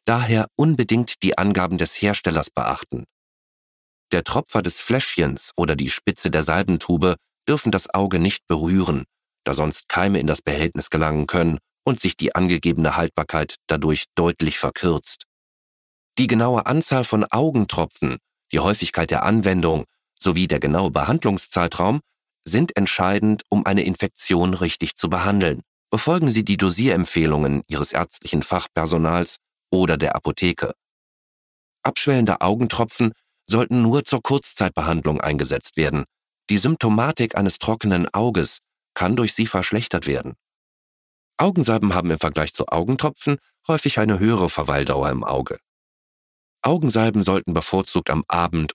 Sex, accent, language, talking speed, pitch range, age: male, German, German, 125 wpm, 80-110 Hz, 40-59